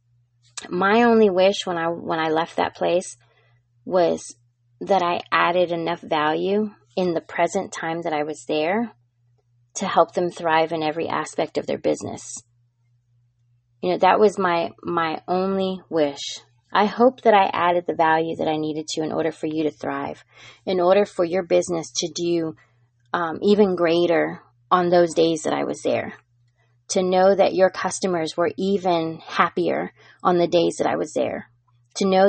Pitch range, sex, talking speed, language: 155-195 Hz, female, 175 wpm, English